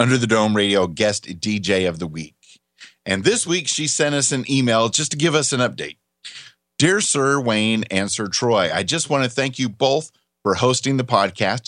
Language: English